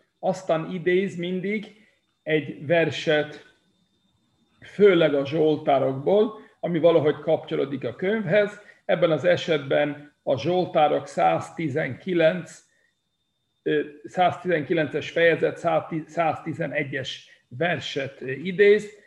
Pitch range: 155-185 Hz